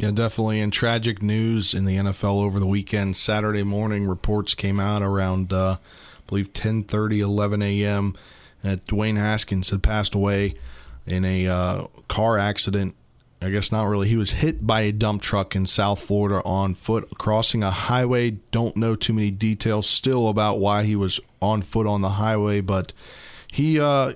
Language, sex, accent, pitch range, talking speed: English, male, American, 100-120 Hz, 175 wpm